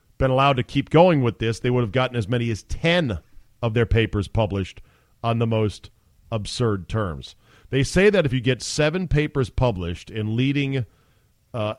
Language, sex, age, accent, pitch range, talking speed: English, male, 40-59, American, 100-145 Hz, 185 wpm